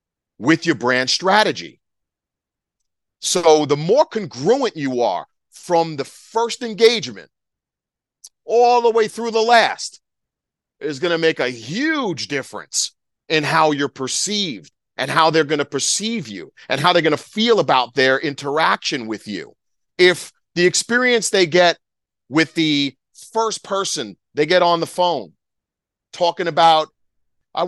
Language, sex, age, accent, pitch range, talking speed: English, male, 40-59, American, 155-190 Hz, 145 wpm